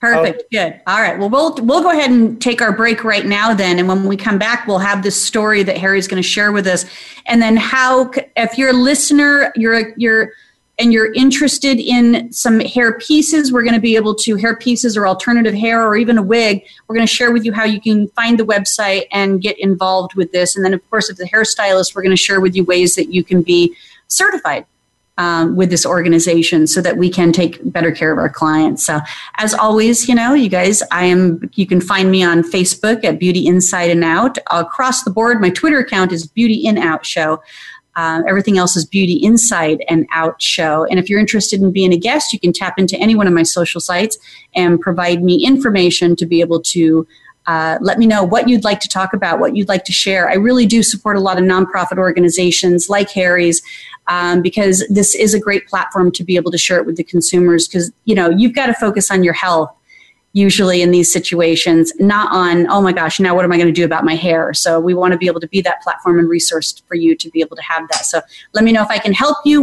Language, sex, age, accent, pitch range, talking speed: English, female, 30-49, American, 175-225 Hz, 240 wpm